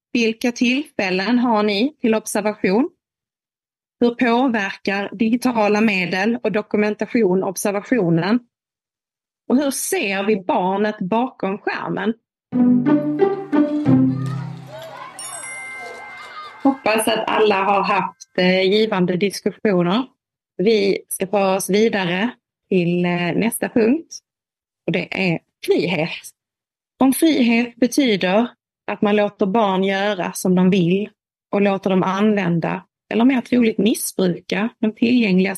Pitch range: 185-235 Hz